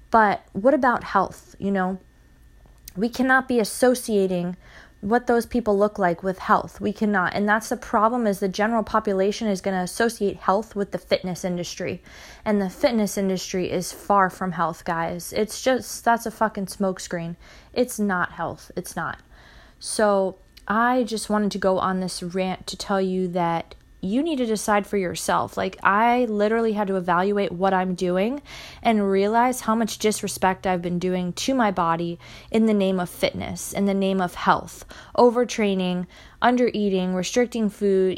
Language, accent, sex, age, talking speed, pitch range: English, American, female, 20-39, 175 wpm, 185-225 Hz